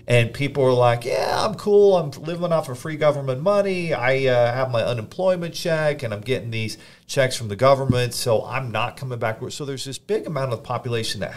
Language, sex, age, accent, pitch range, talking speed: English, male, 40-59, American, 100-135 Hz, 215 wpm